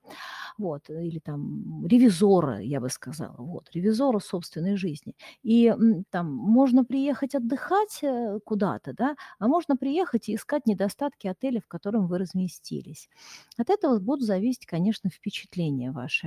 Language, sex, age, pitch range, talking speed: Russian, female, 40-59, 180-240 Hz, 135 wpm